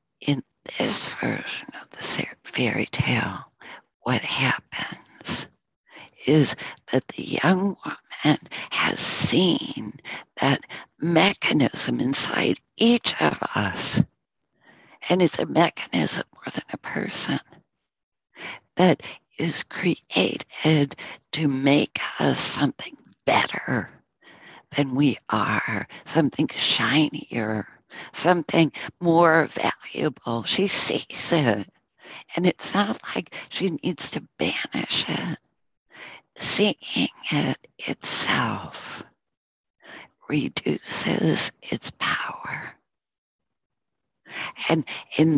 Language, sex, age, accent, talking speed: English, female, 60-79, American, 85 wpm